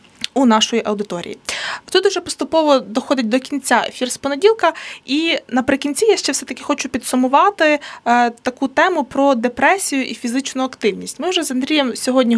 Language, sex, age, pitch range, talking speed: Ukrainian, female, 20-39, 230-295 Hz, 150 wpm